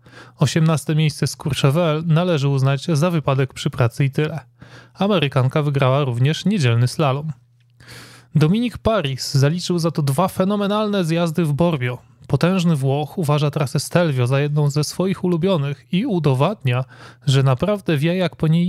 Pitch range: 135-165 Hz